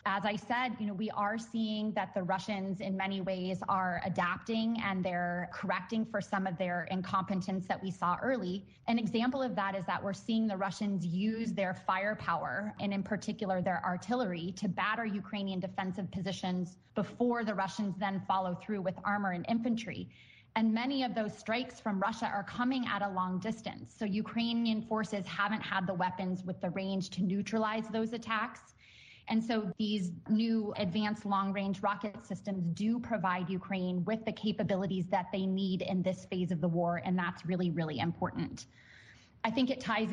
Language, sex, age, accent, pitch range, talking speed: English, female, 20-39, American, 185-215 Hz, 180 wpm